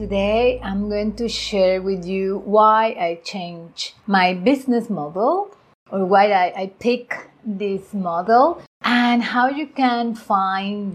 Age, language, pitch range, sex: 30-49, English, 185-235 Hz, female